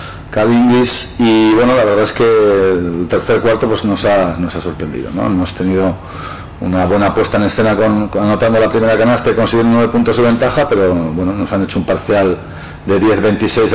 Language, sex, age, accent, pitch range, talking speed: Spanish, male, 50-69, Spanish, 100-115 Hz, 190 wpm